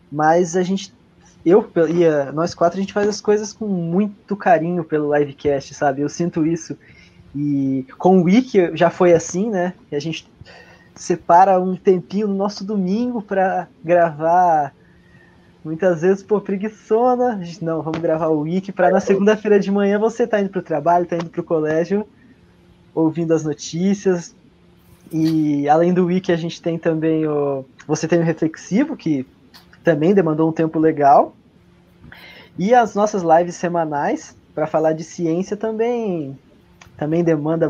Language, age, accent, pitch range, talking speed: Portuguese, 20-39, Brazilian, 150-190 Hz, 155 wpm